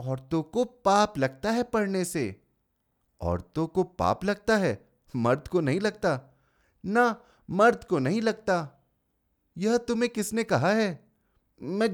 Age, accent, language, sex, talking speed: 30-49, native, Hindi, male, 135 wpm